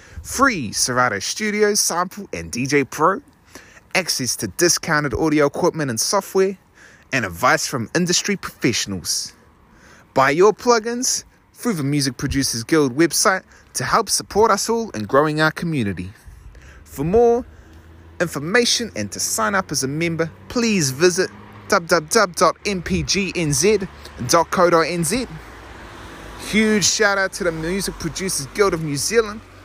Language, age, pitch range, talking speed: English, 30-49, 110-170 Hz, 125 wpm